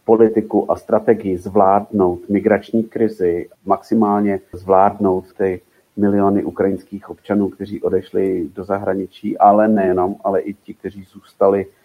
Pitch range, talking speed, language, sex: 95-100 Hz, 115 wpm, Slovak, male